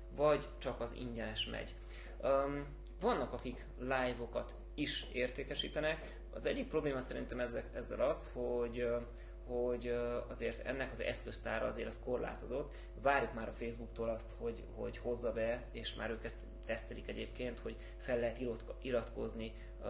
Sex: male